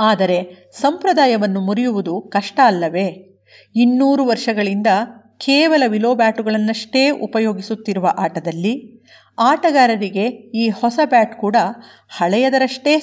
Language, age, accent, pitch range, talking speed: Kannada, 50-69, native, 195-255 Hz, 85 wpm